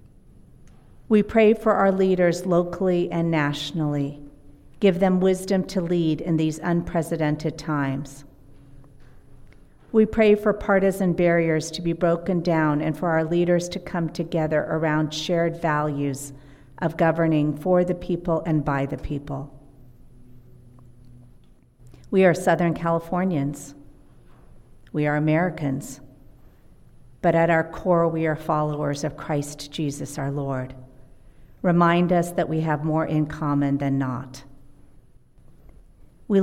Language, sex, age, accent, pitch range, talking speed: English, female, 50-69, American, 145-175 Hz, 125 wpm